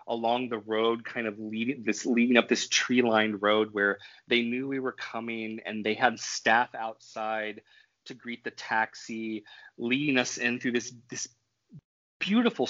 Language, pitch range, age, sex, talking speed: English, 110-140 Hz, 30-49, male, 160 wpm